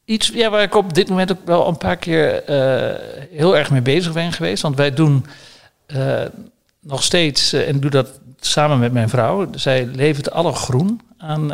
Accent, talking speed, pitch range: Dutch, 205 wpm, 135-170 Hz